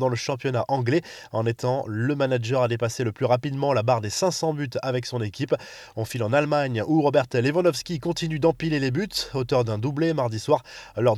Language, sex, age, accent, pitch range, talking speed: French, male, 20-39, French, 120-150 Hz, 205 wpm